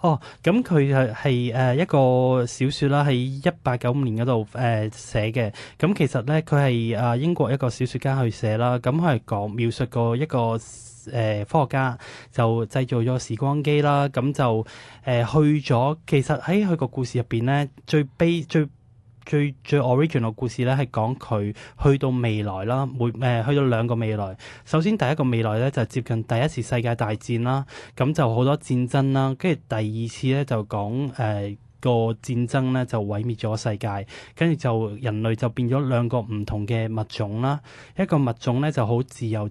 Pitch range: 115-140 Hz